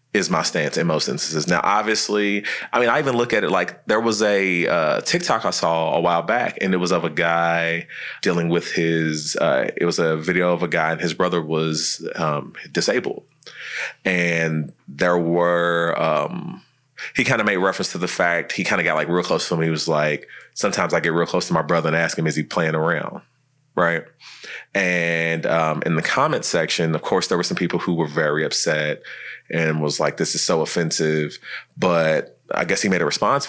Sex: male